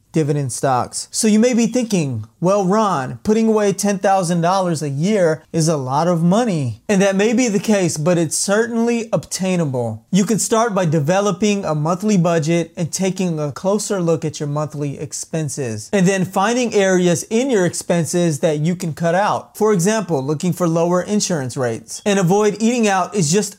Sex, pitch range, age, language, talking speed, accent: male, 160-200 Hz, 30-49, English, 180 wpm, American